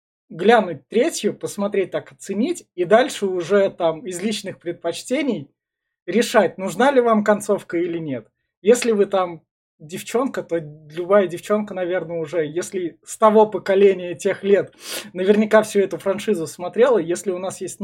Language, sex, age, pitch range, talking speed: Russian, male, 20-39, 170-210 Hz, 145 wpm